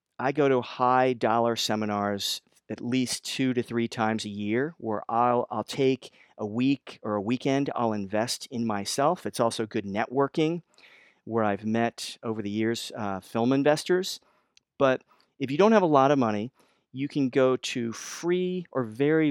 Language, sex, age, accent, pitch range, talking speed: English, male, 40-59, American, 105-130 Hz, 170 wpm